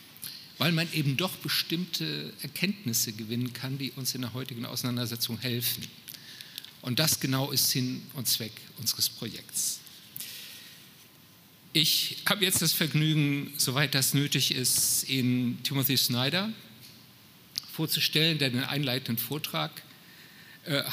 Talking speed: 120 wpm